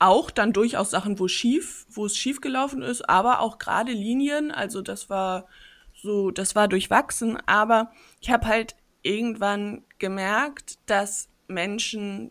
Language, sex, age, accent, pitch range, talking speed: German, female, 20-39, German, 185-230 Hz, 145 wpm